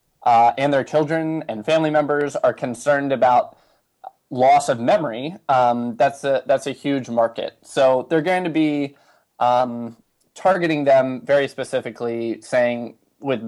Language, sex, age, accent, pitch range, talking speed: English, male, 20-39, American, 120-150 Hz, 145 wpm